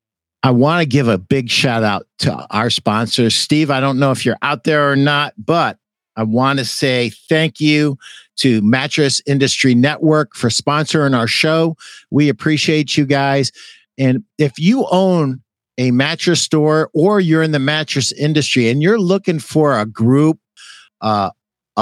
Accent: American